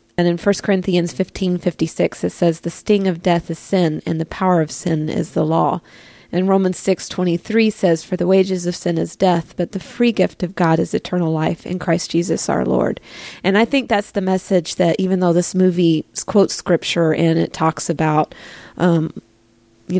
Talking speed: 195 wpm